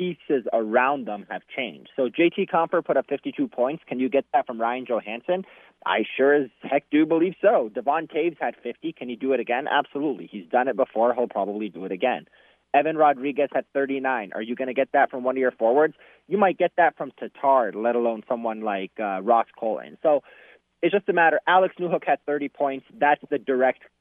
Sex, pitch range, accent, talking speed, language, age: male, 115-145 Hz, American, 220 wpm, English, 30-49